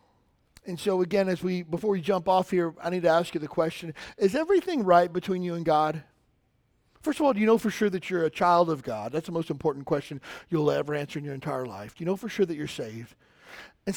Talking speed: 255 wpm